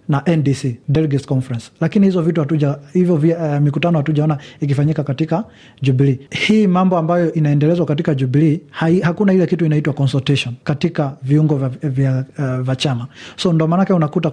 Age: 30-49